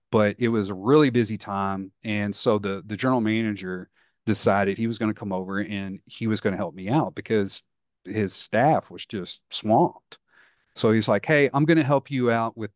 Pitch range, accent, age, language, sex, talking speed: 105-130 Hz, American, 40-59, English, male, 210 wpm